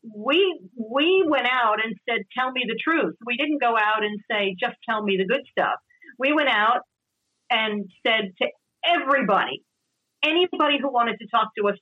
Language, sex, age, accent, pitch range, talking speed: English, female, 50-69, American, 200-265 Hz, 185 wpm